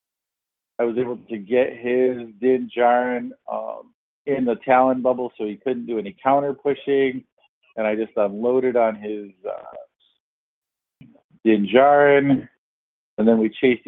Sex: male